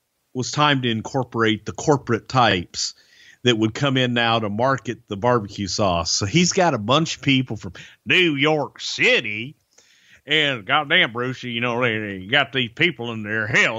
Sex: male